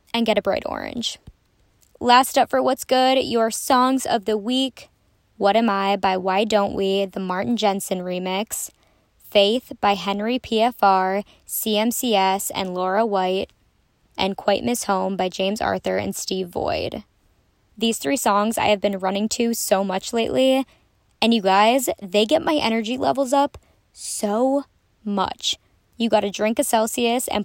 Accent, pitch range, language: American, 200-245 Hz, English